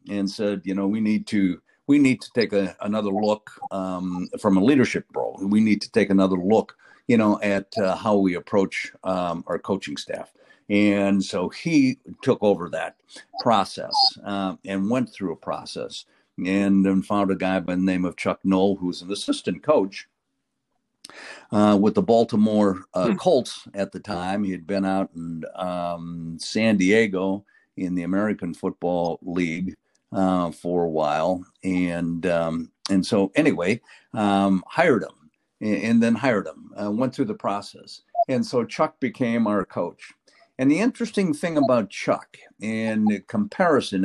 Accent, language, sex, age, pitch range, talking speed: American, English, male, 50-69, 95-115 Hz, 170 wpm